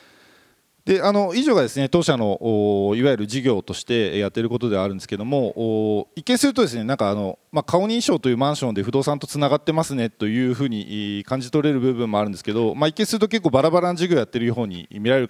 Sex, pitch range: male, 105-160 Hz